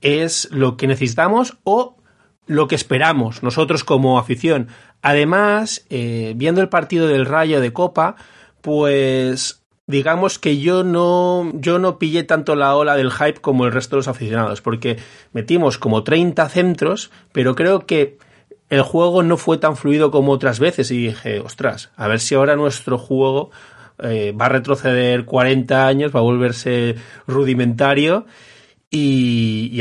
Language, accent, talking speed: Spanish, Spanish, 155 wpm